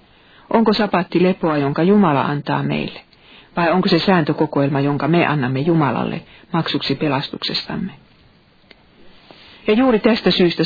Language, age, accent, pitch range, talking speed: Finnish, 50-69, native, 145-185 Hz, 120 wpm